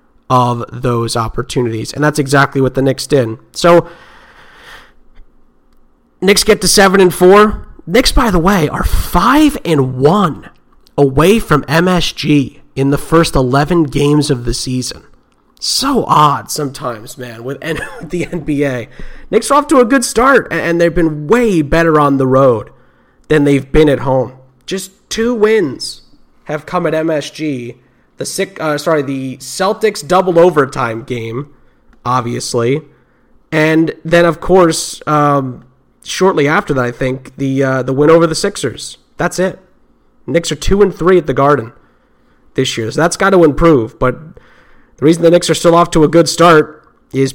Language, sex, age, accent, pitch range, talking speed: English, male, 30-49, American, 135-170 Hz, 160 wpm